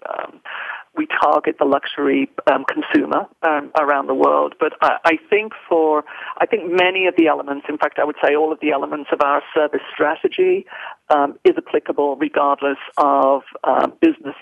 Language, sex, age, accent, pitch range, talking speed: English, male, 50-69, British, 150-195 Hz, 175 wpm